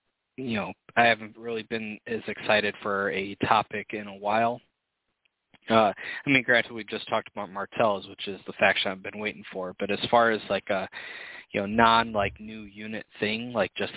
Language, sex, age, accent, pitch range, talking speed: English, male, 20-39, American, 100-115 Hz, 200 wpm